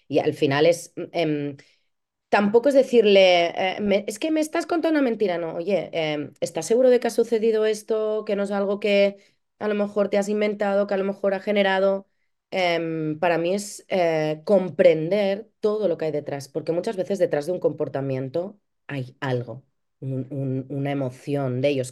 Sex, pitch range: female, 150-205 Hz